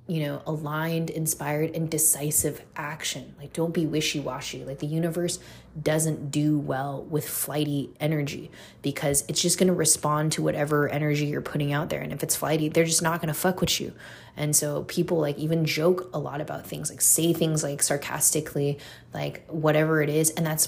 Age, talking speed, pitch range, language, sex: 20-39, 185 wpm, 145-160 Hz, English, female